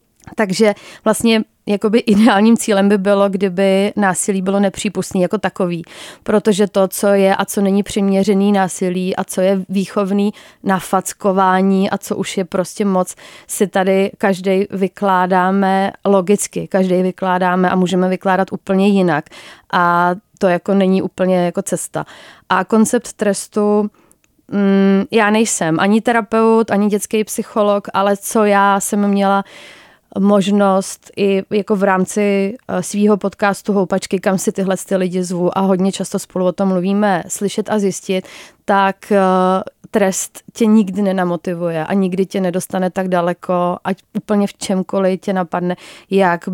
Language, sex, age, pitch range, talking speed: Czech, female, 30-49, 185-205 Hz, 140 wpm